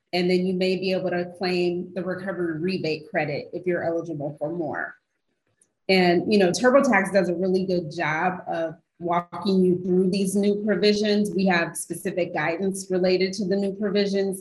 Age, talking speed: 30-49, 175 wpm